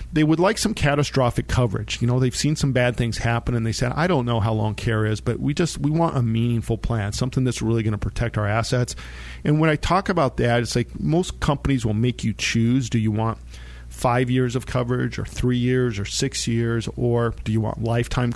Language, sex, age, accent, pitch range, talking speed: English, male, 40-59, American, 110-125 Hz, 235 wpm